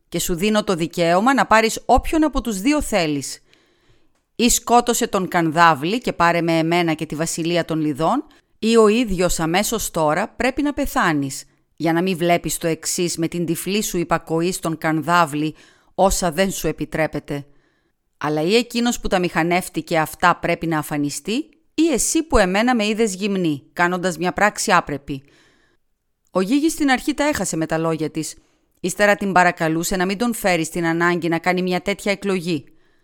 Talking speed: 160 wpm